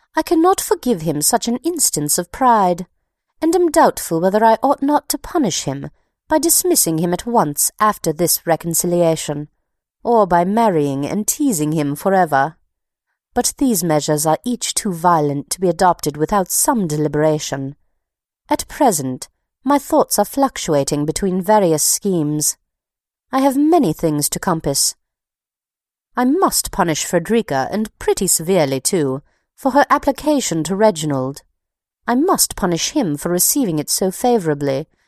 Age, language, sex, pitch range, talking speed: 30-49, English, female, 155-250 Hz, 145 wpm